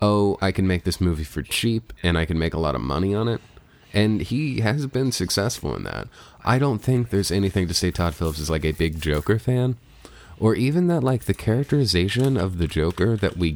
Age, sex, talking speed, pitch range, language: 30-49, male, 225 wpm, 80-105 Hz, English